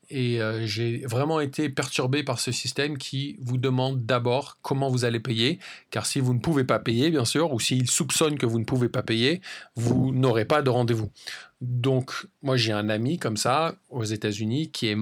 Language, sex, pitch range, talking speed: English, male, 120-145 Hz, 210 wpm